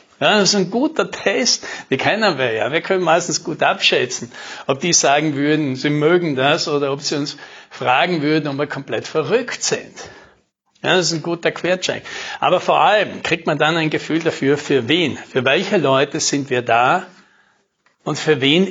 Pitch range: 145-190 Hz